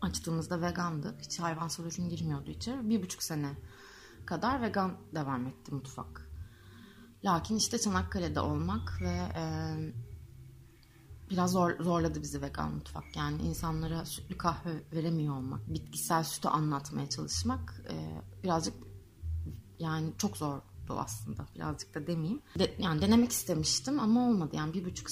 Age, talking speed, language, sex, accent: 30-49, 130 wpm, Turkish, female, native